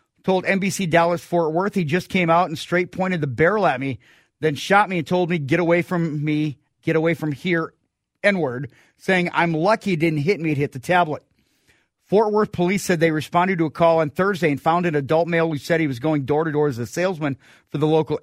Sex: male